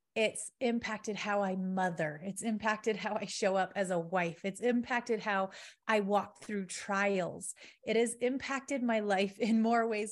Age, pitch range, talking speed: 30-49, 195-250 Hz, 170 wpm